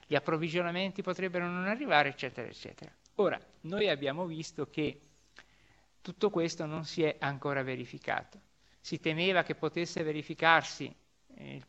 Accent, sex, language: native, male, Italian